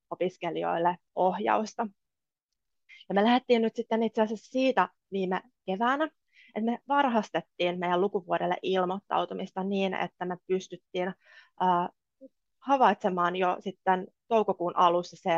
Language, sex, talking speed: Finnish, female, 110 wpm